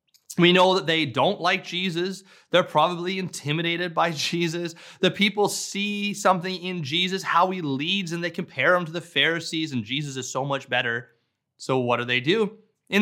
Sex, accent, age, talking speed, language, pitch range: male, American, 30-49, 185 wpm, English, 145-185 Hz